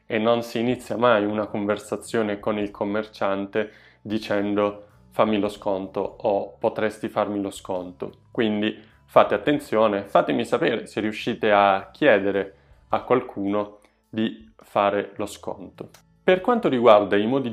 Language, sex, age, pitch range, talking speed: Italian, male, 20-39, 100-130 Hz, 135 wpm